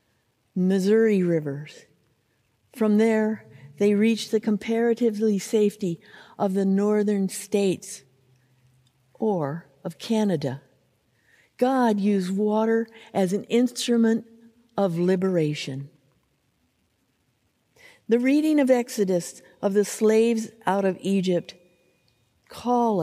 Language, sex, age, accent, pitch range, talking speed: English, female, 50-69, American, 165-225 Hz, 90 wpm